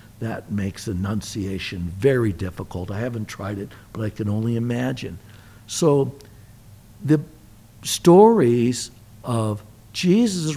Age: 60-79